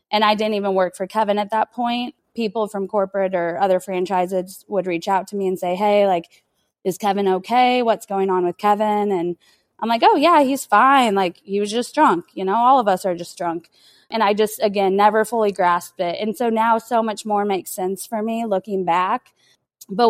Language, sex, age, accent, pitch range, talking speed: English, female, 20-39, American, 185-215 Hz, 220 wpm